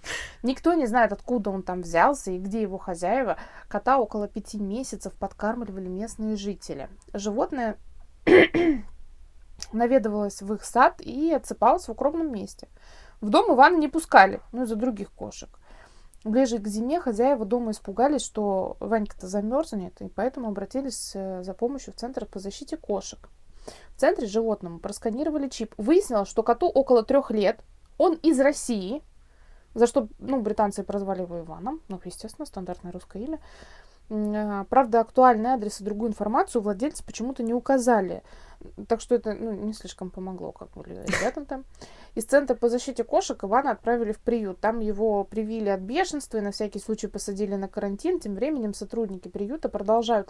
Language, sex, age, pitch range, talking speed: Russian, female, 20-39, 200-255 Hz, 155 wpm